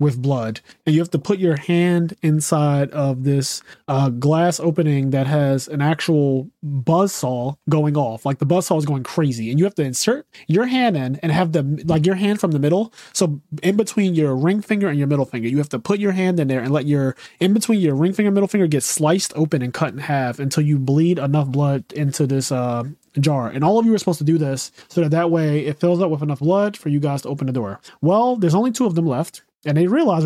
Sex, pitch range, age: male, 140-175 Hz, 20-39